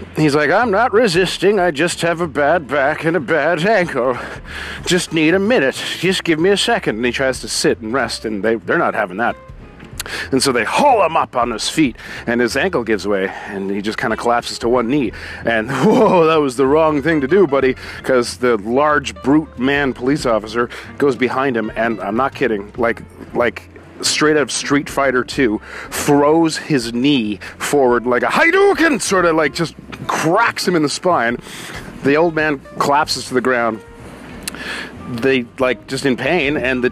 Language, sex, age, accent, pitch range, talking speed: English, male, 40-59, American, 115-155 Hz, 200 wpm